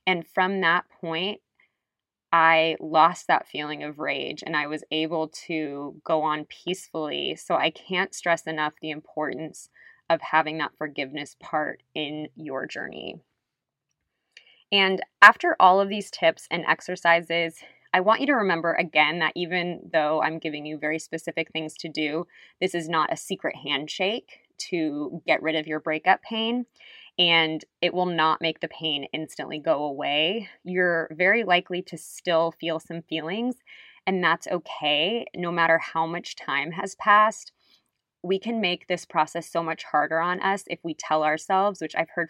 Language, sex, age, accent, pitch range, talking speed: English, female, 20-39, American, 155-190 Hz, 165 wpm